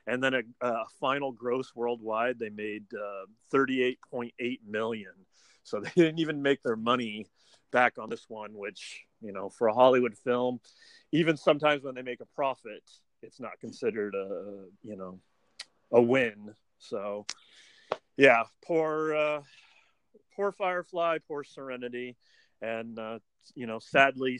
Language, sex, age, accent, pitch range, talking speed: English, male, 40-59, American, 105-140 Hz, 145 wpm